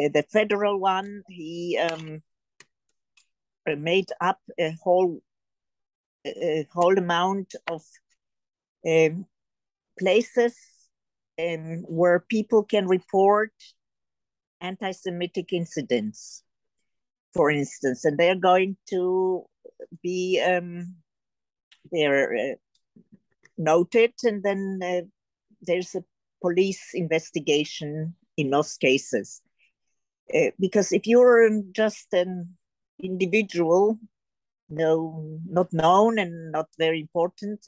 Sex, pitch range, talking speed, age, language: female, 165-205 Hz, 90 wpm, 50-69, English